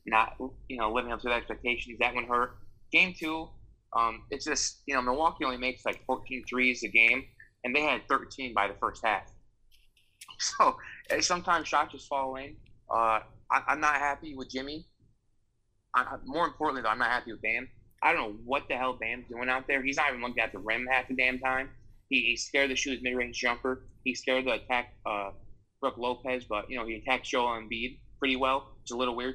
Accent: American